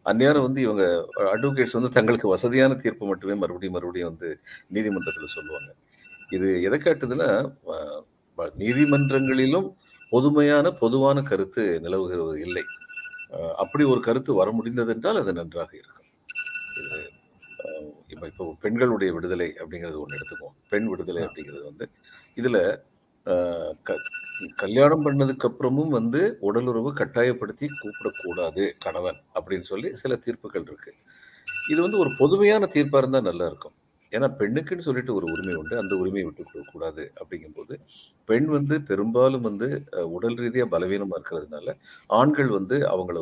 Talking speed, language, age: 120 wpm, Tamil, 50-69